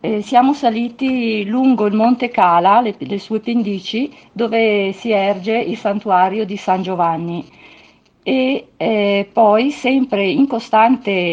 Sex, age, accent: female, 50-69, native